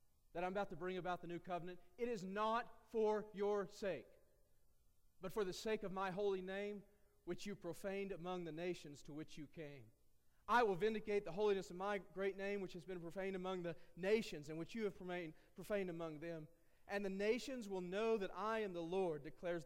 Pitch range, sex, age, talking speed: 150-195 Hz, male, 40-59, 205 wpm